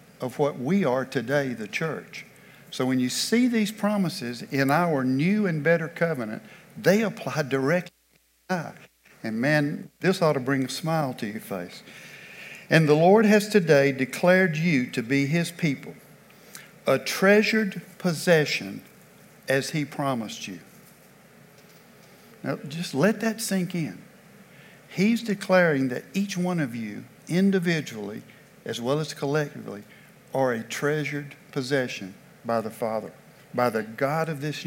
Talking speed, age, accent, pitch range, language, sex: 145 wpm, 60-79, American, 135-185 Hz, English, male